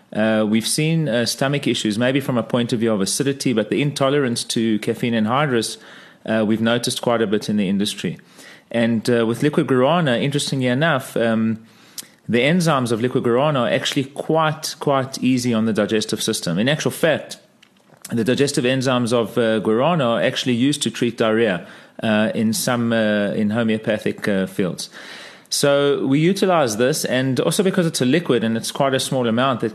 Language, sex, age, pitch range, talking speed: English, male, 30-49, 110-135 Hz, 185 wpm